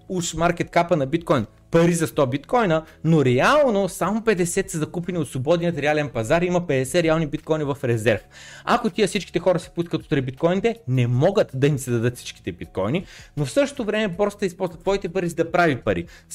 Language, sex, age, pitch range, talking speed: Bulgarian, male, 30-49, 140-190 Hz, 205 wpm